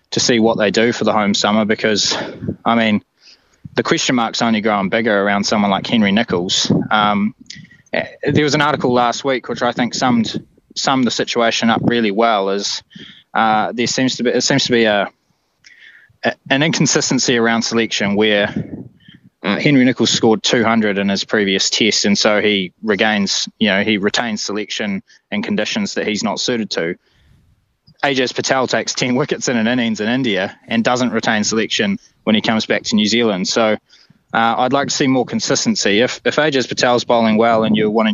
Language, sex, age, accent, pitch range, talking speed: English, male, 20-39, Australian, 110-150 Hz, 190 wpm